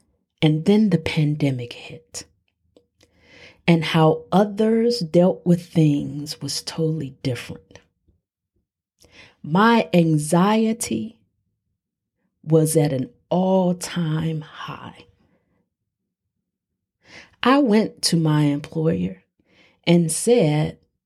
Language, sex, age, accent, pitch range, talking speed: English, female, 40-59, American, 145-190 Hz, 85 wpm